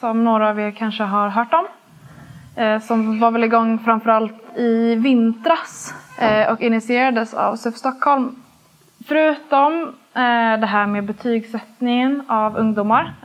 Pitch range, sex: 210-245 Hz, female